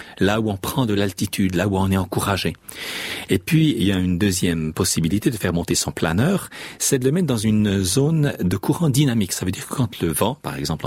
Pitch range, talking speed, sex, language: 90-120 Hz, 240 wpm, male, French